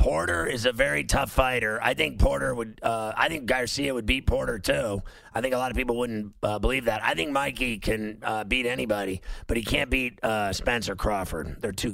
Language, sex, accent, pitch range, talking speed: English, male, American, 105-125 Hz, 235 wpm